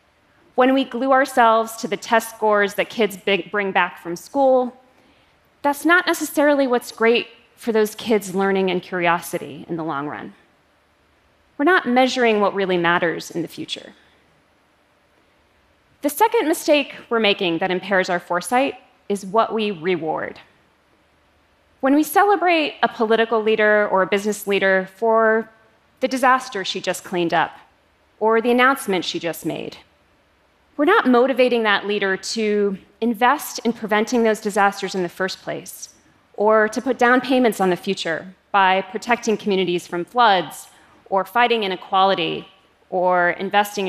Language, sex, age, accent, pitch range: Korean, female, 30-49, American, 190-255 Hz